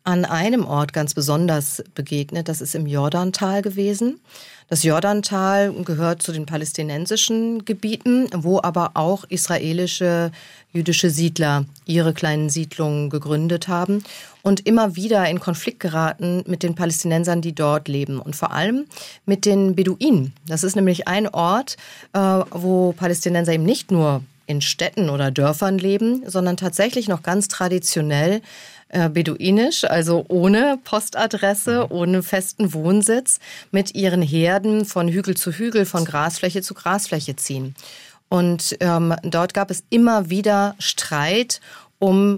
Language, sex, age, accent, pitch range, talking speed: German, female, 40-59, German, 165-200 Hz, 135 wpm